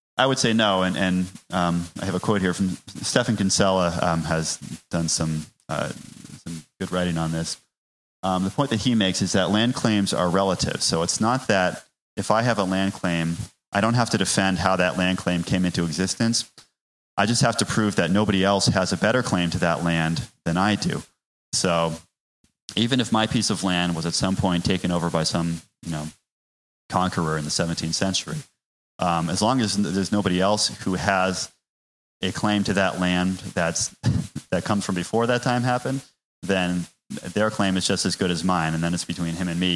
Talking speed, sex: 205 wpm, male